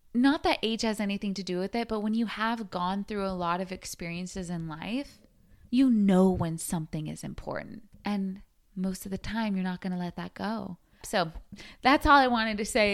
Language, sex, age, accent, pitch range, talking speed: English, female, 20-39, American, 190-265 Hz, 215 wpm